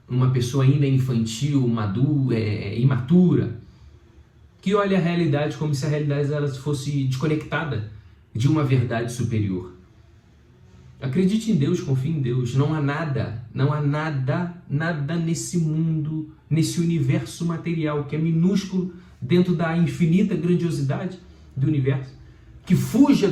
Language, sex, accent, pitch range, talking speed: Portuguese, male, Brazilian, 120-165 Hz, 130 wpm